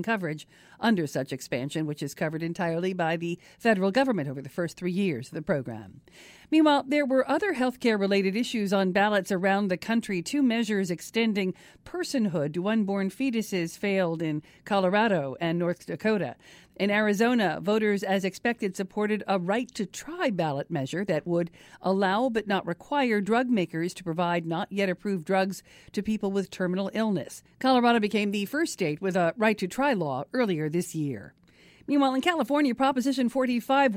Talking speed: 155 wpm